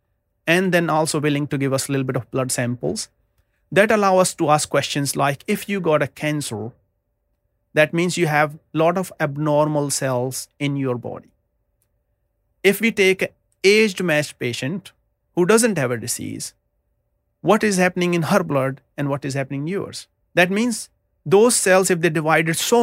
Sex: male